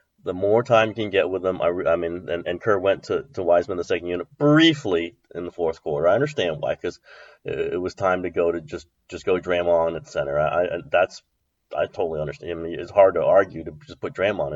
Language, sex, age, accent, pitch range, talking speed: English, male, 30-49, American, 100-135 Hz, 255 wpm